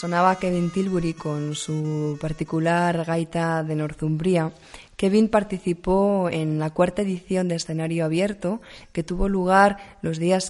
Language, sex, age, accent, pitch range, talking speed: Spanish, female, 20-39, Spanish, 155-180 Hz, 130 wpm